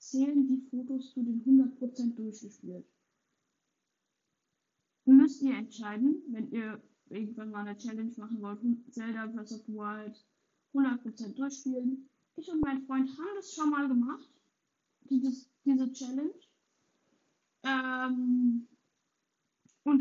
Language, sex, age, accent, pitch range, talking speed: German, female, 10-29, German, 230-275 Hz, 115 wpm